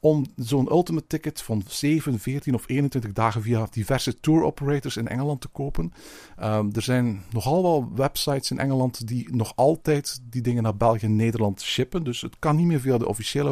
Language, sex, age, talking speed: Dutch, male, 50-69, 190 wpm